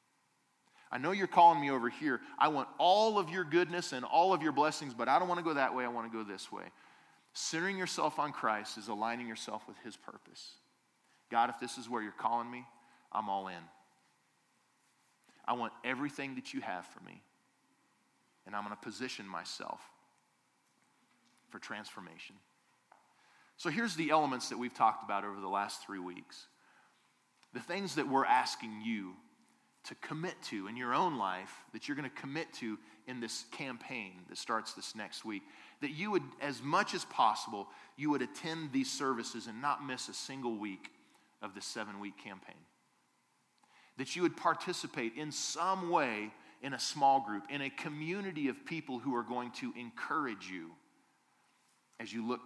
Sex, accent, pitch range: male, American, 110-155 Hz